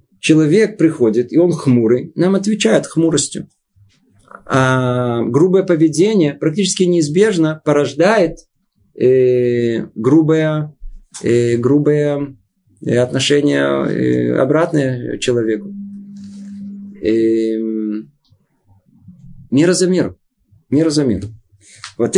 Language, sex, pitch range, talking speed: Russian, male, 125-170 Hz, 80 wpm